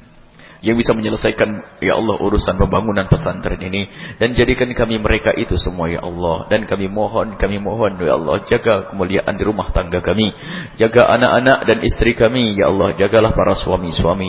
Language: English